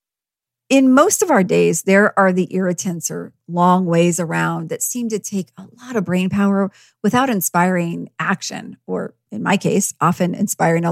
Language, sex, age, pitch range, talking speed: English, female, 40-59, 170-210 Hz, 175 wpm